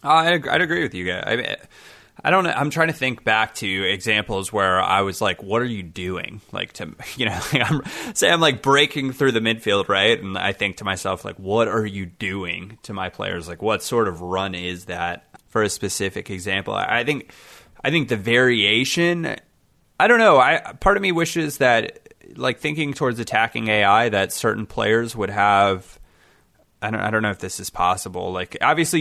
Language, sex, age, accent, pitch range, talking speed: English, male, 20-39, American, 95-135 Hz, 210 wpm